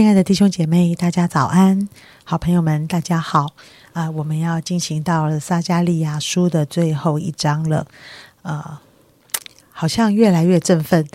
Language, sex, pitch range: Chinese, female, 155-185 Hz